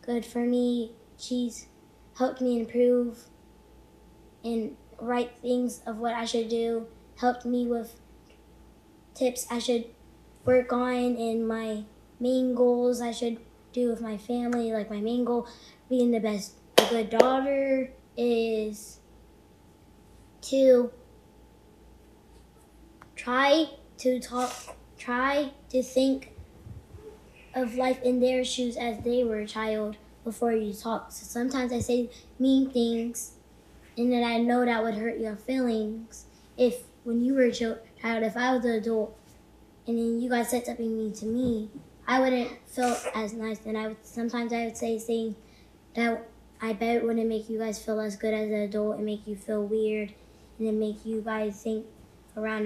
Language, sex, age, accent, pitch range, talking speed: English, female, 10-29, American, 220-245 Hz, 155 wpm